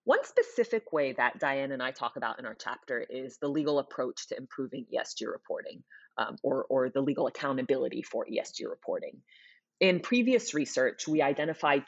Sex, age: female, 30-49